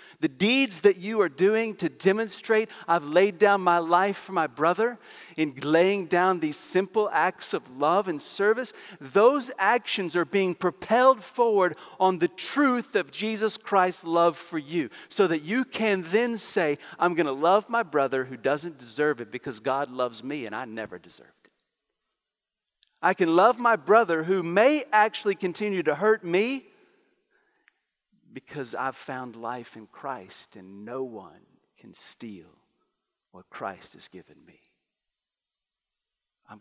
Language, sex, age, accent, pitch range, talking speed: English, male, 40-59, American, 140-220 Hz, 155 wpm